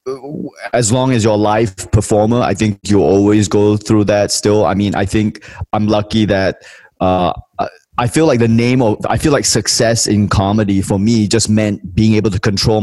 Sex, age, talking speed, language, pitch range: male, 20-39, 200 wpm, English, 95-115 Hz